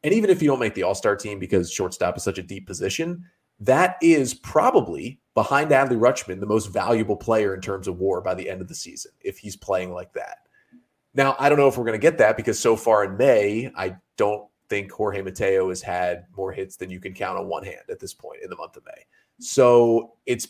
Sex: male